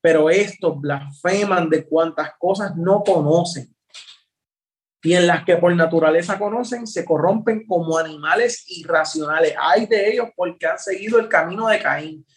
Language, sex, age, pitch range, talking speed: Spanish, male, 30-49, 160-205 Hz, 145 wpm